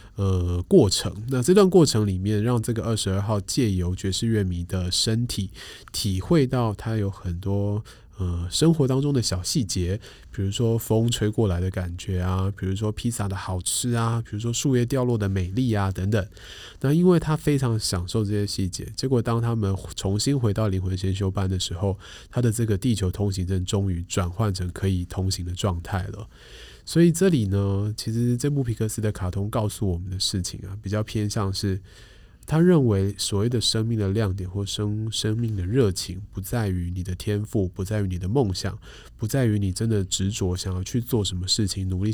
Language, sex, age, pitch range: Chinese, male, 20-39, 95-115 Hz